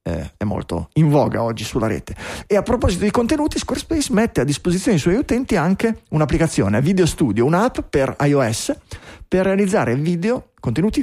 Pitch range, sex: 130-185 Hz, male